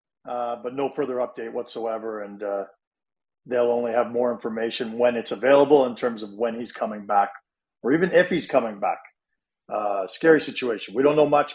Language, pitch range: English, 125-165 Hz